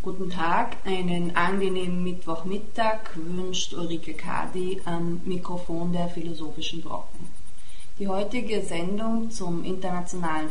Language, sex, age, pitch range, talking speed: German, female, 30-49, 170-200 Hz, 105 wpm